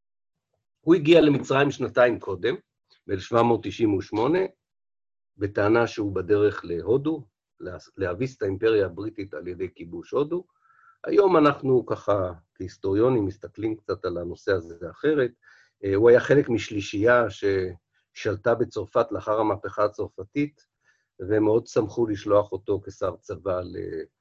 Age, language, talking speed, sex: 50-69, Hebrew, 110 wpm, male